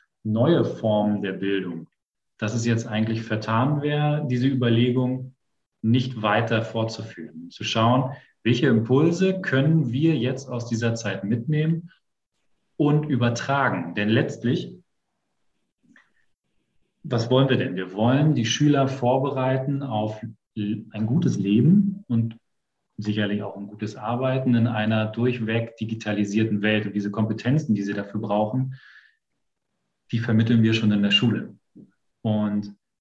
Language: German